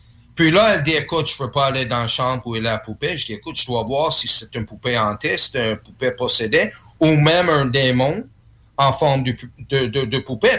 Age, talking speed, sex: 30-49, 245 wpm, male